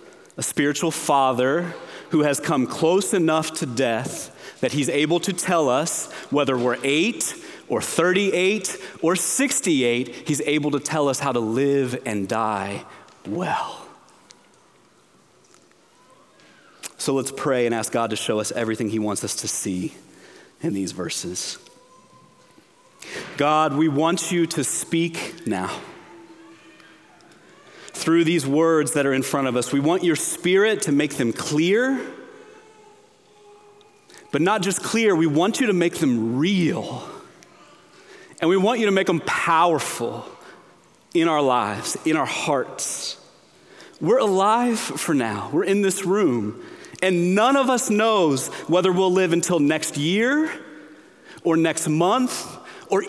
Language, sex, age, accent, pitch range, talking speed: English, male, 30-49, American, 140-200 Hz, 140 wpm